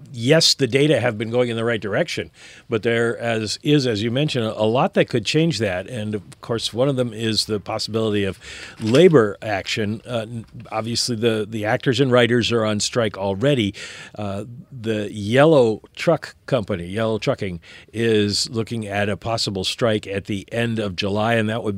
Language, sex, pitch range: English, male, 105-135 Hz